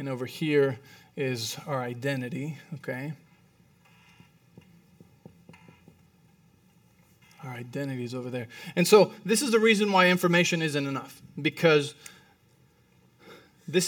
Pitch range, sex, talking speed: 145-180 Hz, male, 105 wpm